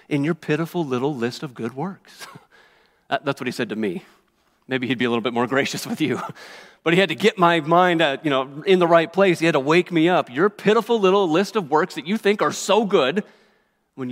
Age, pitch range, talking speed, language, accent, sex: 40-59, 115-160 Hz, 240 wpm, English, American, male